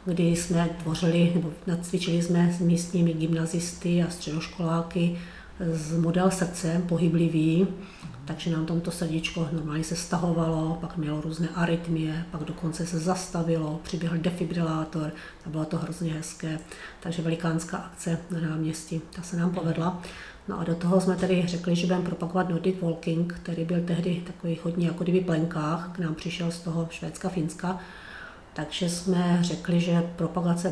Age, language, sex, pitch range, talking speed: 40-59, Czech, female, 165-175 Hz, 150 wpm